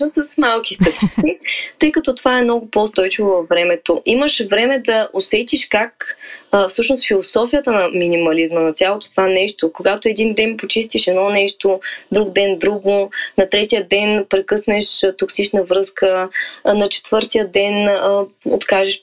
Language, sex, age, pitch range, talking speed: Bulgarian, female, 20-39, 195-255 Hz, 135 wpm